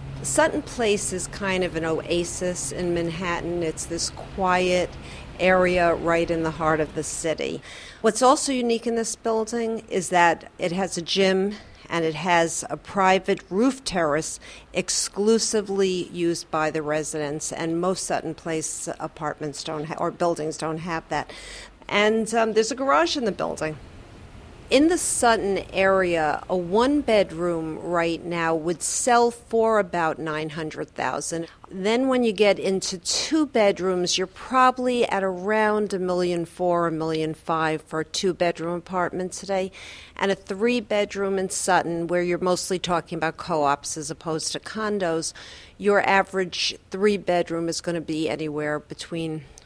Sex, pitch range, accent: female, 160-200 Hz, American